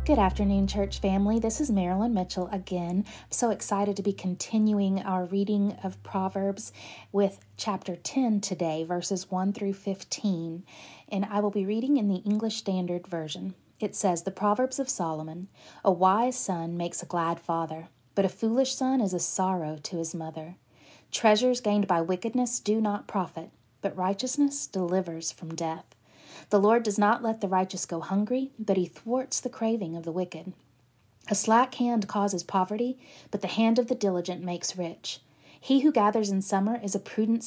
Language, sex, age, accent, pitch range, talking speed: English, female, 30-49, American, 175-215 Hz, 175 wpm